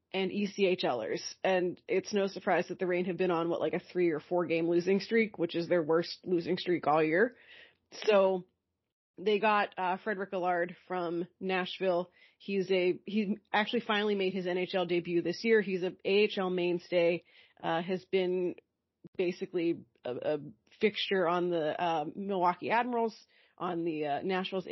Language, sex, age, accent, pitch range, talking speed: English, female, 30-49, American, 175-205 Hz, 165 wpm